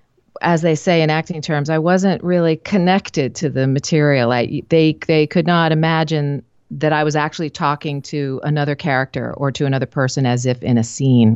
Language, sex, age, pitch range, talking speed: English, female, 40-59, 135-175 Hz, 190 wpm